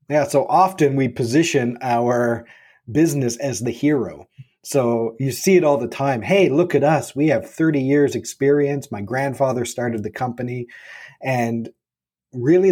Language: English